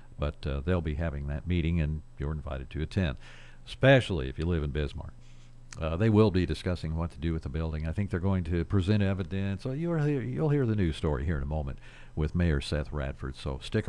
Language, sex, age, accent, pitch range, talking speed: English, male, 60-79, American, 80-120 Hz, 230 wpm